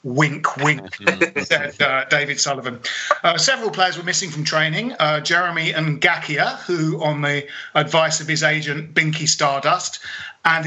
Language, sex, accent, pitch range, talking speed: English, male, British, 150-185 Hz, 145 wpm